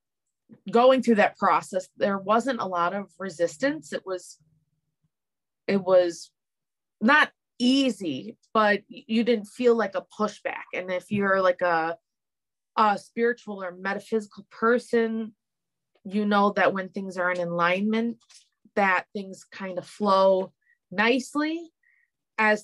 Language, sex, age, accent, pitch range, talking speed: English, female, 20-39, American, 185-235 Hz, 125 wpm